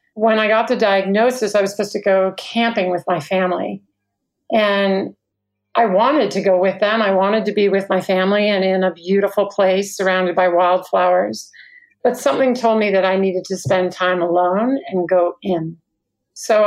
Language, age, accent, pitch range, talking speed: English, 50-69, American, 185-220 Hz, 185 wpm